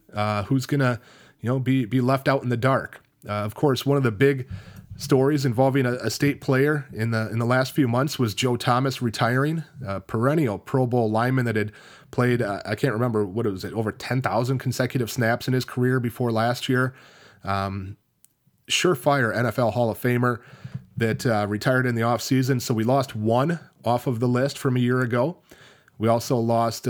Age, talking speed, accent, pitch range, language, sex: 30-49, 200 wpm, American, 110-135 Hz, English, male